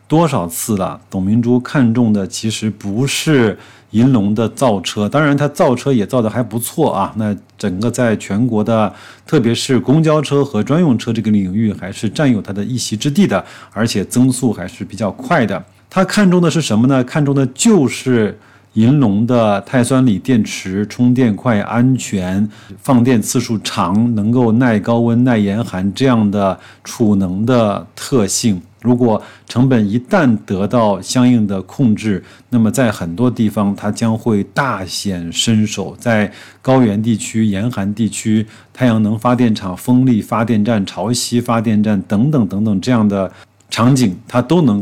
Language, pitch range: Chinese, 105-125 Hz